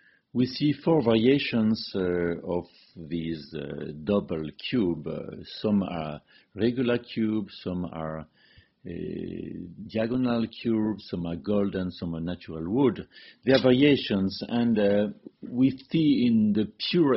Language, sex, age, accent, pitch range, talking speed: Italian, male, 50-69, French, 90-115 Hz, 130 wpm